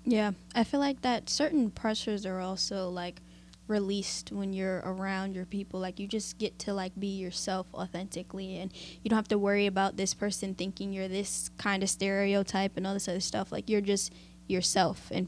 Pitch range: 175-205 Hz